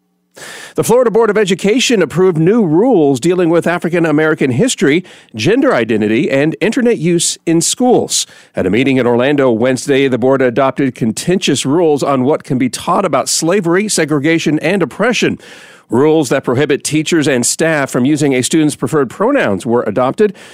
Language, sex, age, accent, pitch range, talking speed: English, male, 50-69, American, 135-190 Hz, 160 wpm